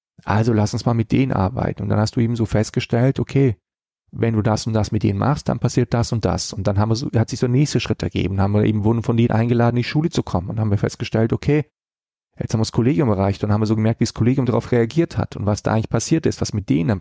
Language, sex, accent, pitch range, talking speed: German, male, German, 105-125 Hz, 300 wpm